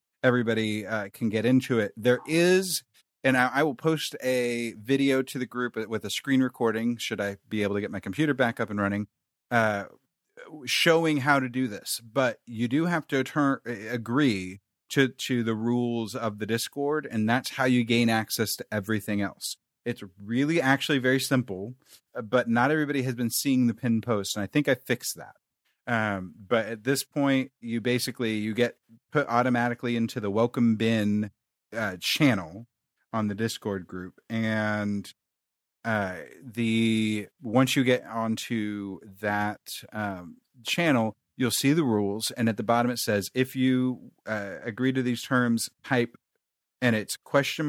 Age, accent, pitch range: 30-49, American, 110-130 Hz